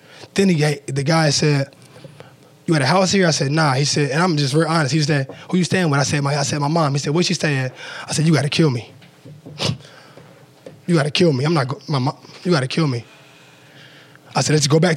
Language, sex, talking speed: English, male, 260 wpm